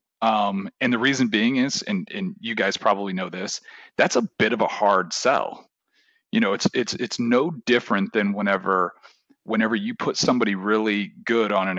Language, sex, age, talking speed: English, male, 30-49, 190 wpm